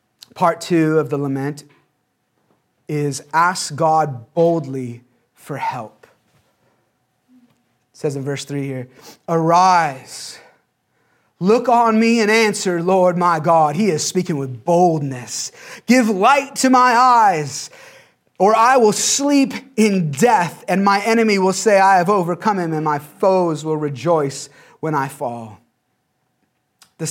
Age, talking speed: 30-49, 135 wpm